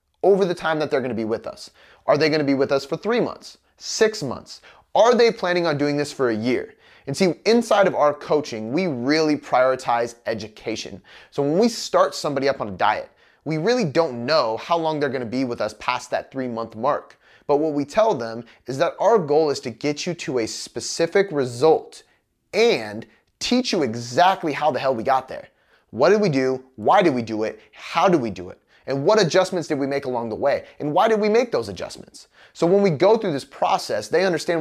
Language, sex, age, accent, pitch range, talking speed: English, male, 30-49, American, 130-185 Hz, 225 wpm